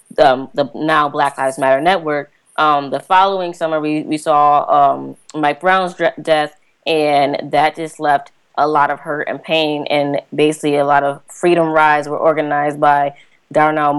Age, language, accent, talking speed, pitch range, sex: 20-39, English, American, 170 wpm, 145-170 Hz, female